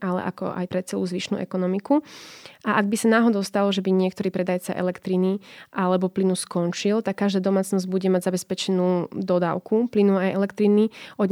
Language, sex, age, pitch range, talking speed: Slovak, female, 20-39, 185-205 Hz, 170 wpm